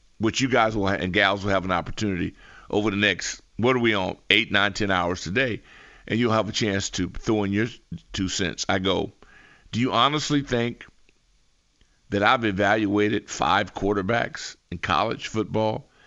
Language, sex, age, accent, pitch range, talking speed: English, male, 50-69, American, 100-155 Hz, 170 wpm